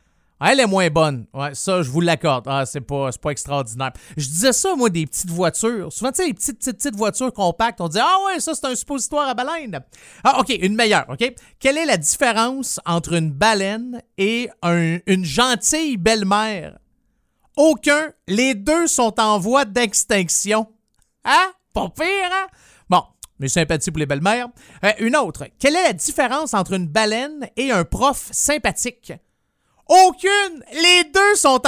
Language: French